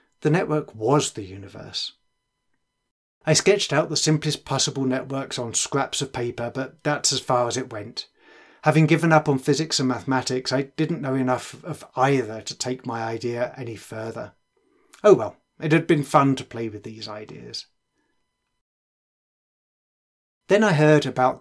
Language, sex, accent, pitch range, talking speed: English, male, British, 120-150 Hz, 160 wpm